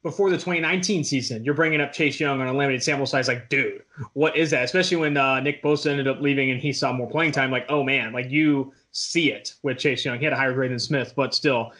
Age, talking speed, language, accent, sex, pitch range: 20-39, 265 wpm, English, American, male, 135-155 Hz